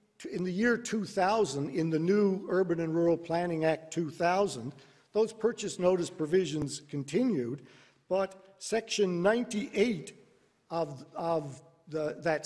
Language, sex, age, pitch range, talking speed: English, male, 50-69, 160-200 Hz, 135 wpm